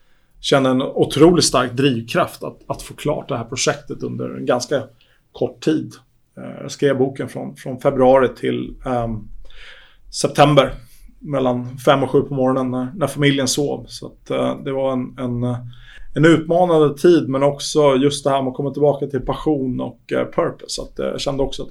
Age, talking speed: 30-49, 180 wpm